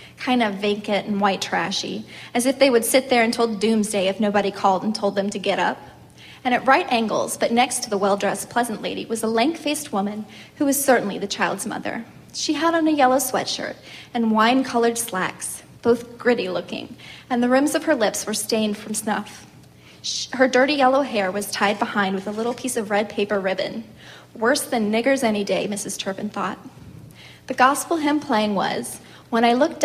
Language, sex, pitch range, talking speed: English, female, 205-250 Hz, 195 wpm